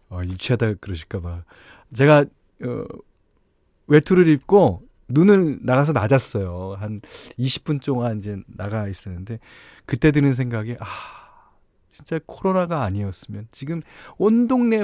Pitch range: 100-145 Hz